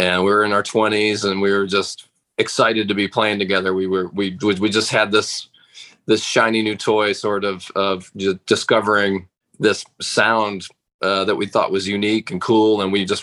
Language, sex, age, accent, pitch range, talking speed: English, male, 20-39, American, 95-115 Hz, 200 wpm